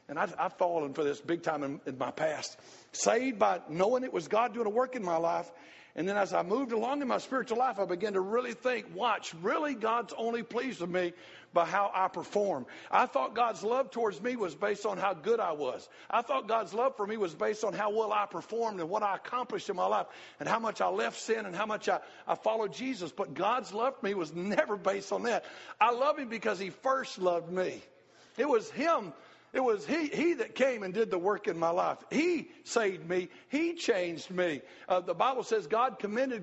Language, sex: English, male